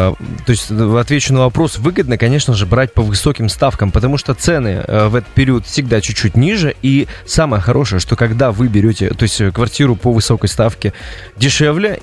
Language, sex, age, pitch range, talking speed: Russian, male, 20-39, 105-145 Hz, 175 wpm